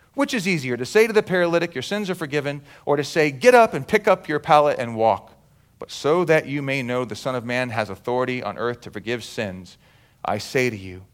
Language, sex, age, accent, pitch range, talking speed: English, male, 40-59, American, 110-160 Hz, 240 wpm